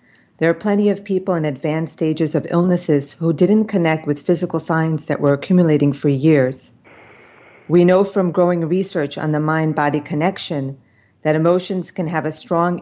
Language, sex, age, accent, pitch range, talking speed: English, female, 40-59, American, 140-170 Hz, 175 wpm